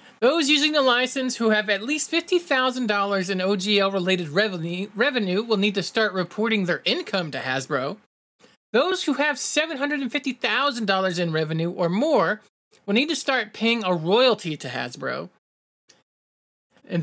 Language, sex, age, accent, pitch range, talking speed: English, male, 30-49, American, 170-220 Hz, 140 wpm